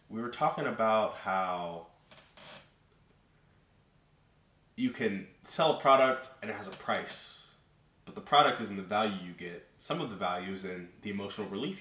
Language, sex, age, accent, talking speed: English, male, 20-39, American, 170 wpm